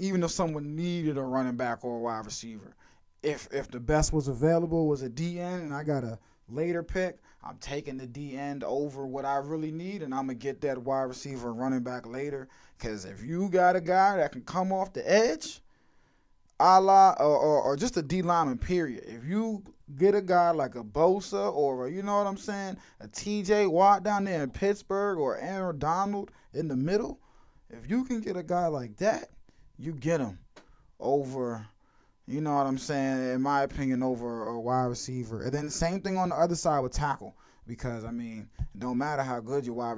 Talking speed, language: 210 wpm, English